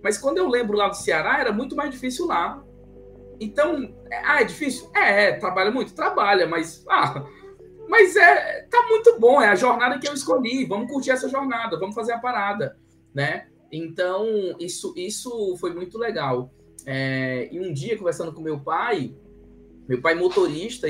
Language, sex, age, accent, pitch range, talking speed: Portuguese, male, 20-39, Brazilian, 155-255 Hz, 180 wpm